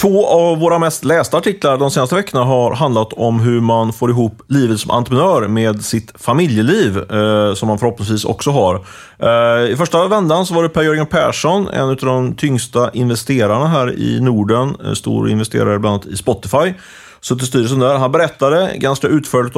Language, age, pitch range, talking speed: Swedish, 30-49, 110-145 Hz, 170 wpm